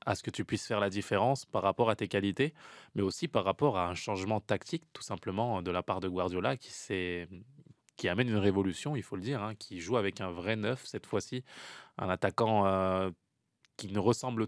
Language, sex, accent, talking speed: French, male, French, 215 wpm